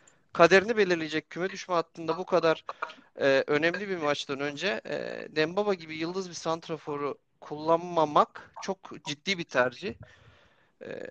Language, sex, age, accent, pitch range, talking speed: Turkish, male, 50-69, native, 150-185 Hz, 130 wpm